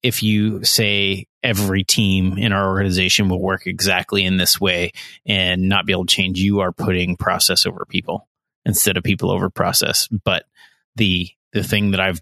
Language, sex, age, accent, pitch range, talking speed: English, male, 30-49, American, 95-115 Hz, 180 wpm